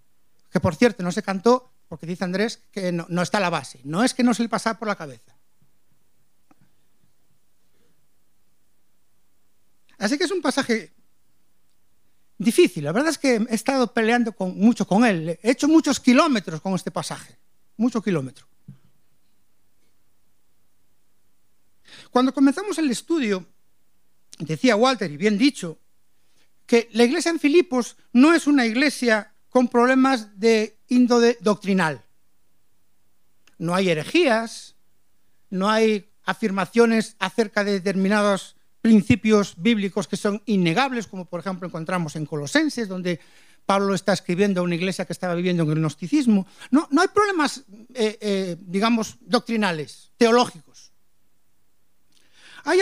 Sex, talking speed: male, 130 wpm